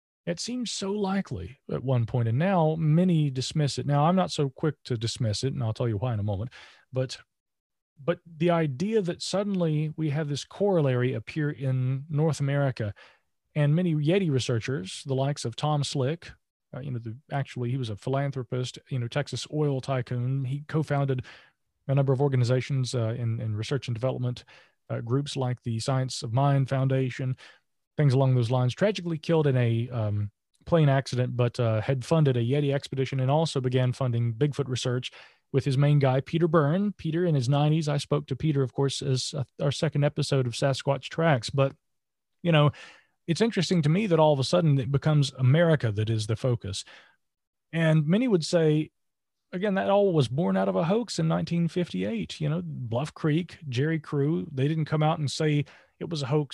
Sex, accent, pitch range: male, American, 130-160 Hz